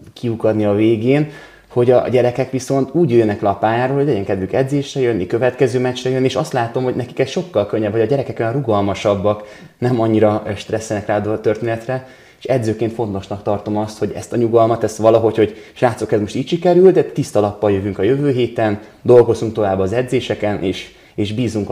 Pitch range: 100-120 Hz